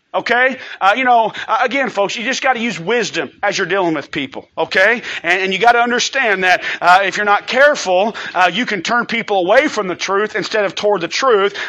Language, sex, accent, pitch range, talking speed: English, male, American, 190-240 Hz, 225 wpm